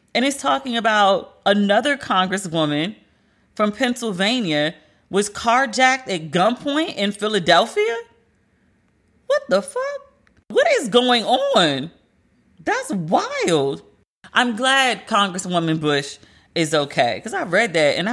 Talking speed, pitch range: 115 wpm, 165-230 Hz